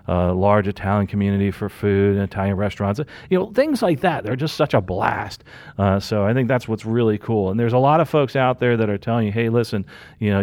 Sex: male